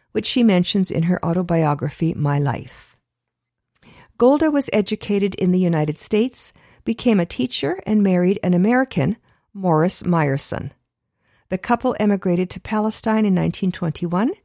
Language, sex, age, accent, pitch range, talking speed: English, female, 50-69, American, 155-225 Hz, 130 wpm